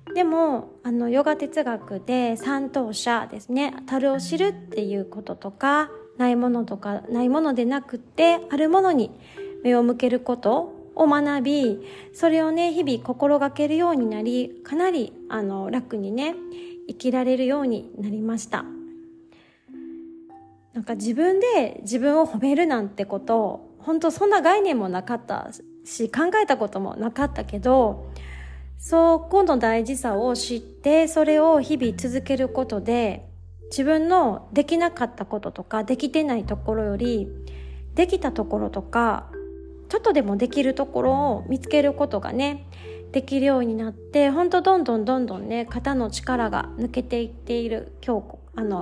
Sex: female